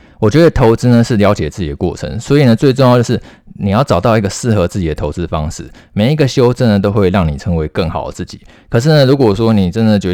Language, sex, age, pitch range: Chinese, male, 20-39, 90-120 Hz